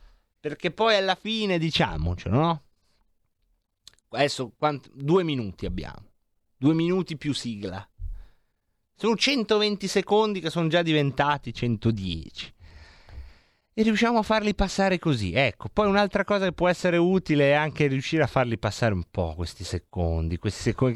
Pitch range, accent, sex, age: 120-190 Hz, native, male, 30-49